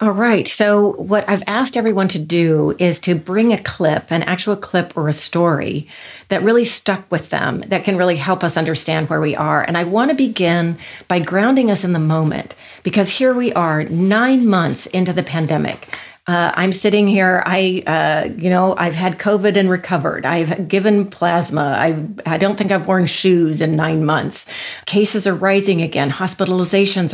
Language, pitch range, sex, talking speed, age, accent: English, 165-205 Hz, female, 185 wpm, 40-59, American